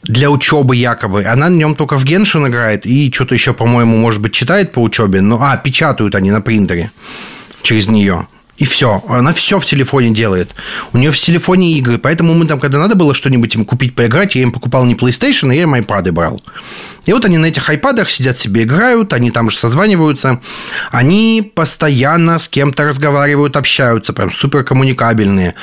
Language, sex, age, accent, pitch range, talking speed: Russian, male, 30-49, native, 120-165 Hz, 185 wpm